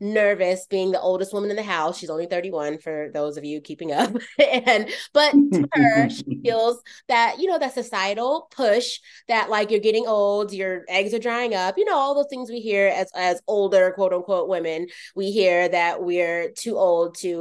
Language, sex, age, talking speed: English, female, 20-39, 205 wpm